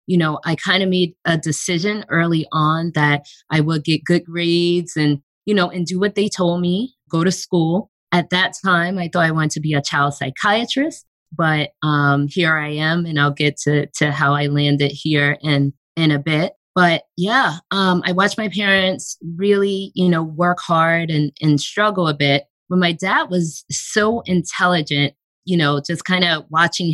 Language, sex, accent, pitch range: English, female, American, 155-185 Hz